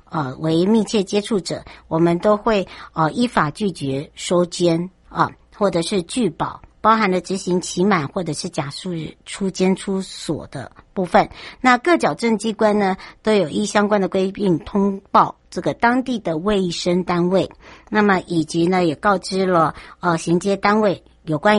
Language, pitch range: Chinese, 165-200 Hz